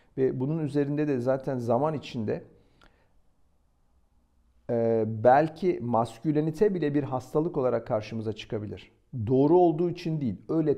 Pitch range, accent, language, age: 110-165 Hz, native, Turkish, 50-69